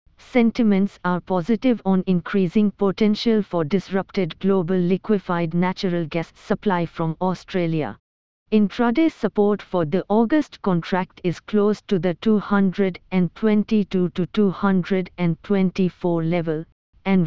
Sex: female